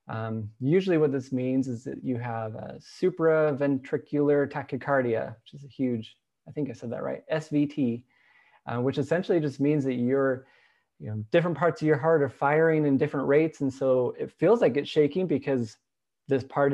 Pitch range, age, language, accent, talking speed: 120-150 Hz, 20-39, English, American, 185 wpm